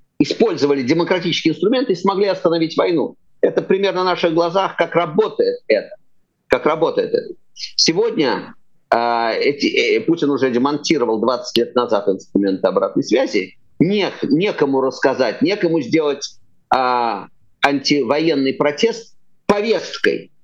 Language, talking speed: Russian, 115 wpm